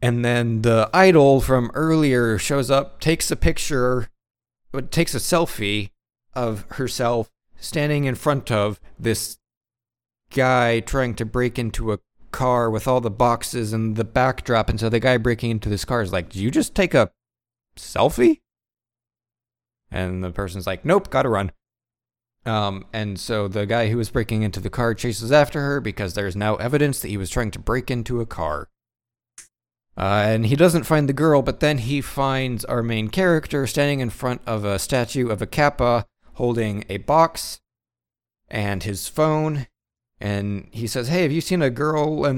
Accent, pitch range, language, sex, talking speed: American, 110-130 Hz, English, male, 175 wpm